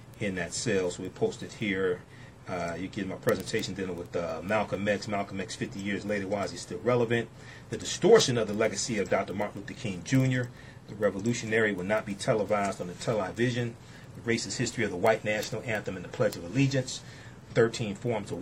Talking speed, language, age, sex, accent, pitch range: 205 wpm, English, 40-59, male, American, 100-130 Hz